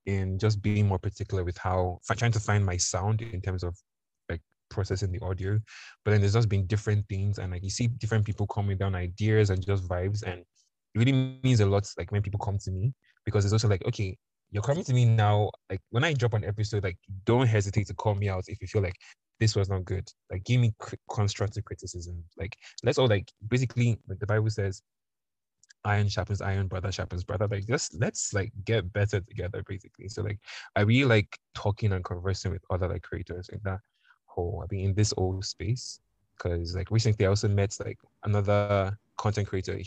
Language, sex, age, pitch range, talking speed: English, male, 20-39, 95-110 Hz, 210 wpm